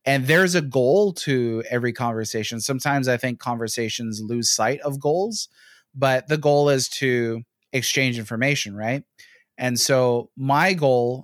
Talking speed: 145 wpm